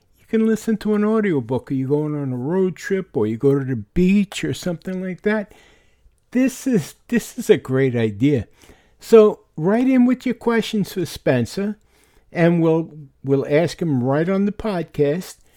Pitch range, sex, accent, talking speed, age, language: 145-210 Hz, male, American, 180 wpm, 60-79, English